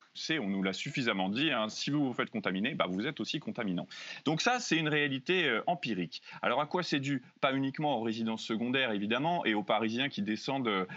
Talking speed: 215 wpm